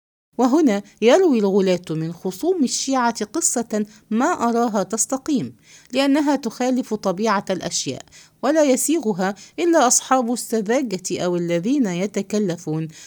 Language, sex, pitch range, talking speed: English, female, 190-270 Hz, 100 wpm